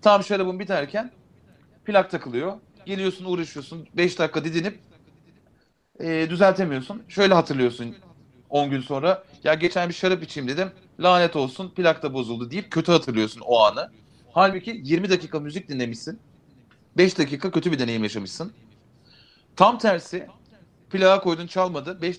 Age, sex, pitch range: 40-59, male, 150-190 Hz